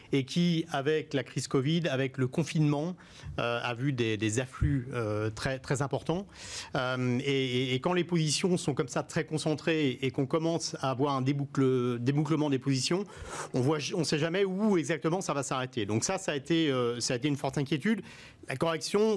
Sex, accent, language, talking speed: male, French, French, 200 wpm